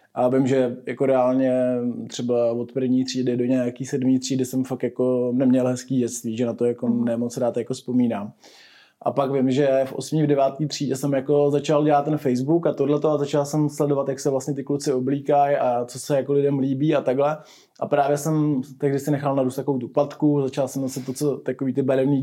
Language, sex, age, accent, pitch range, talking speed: Czech, male, 20-39, native, 130-150 Hz, 215 wpm